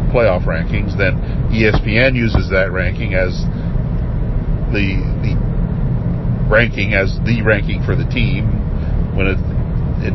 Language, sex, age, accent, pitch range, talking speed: English, male, 50-69, American, 90-125 Hz, 120 wpm